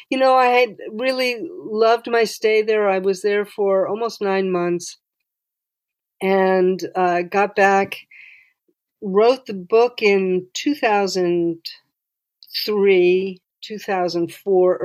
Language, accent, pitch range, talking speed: English, American, 180-235 Hz, 100 wpm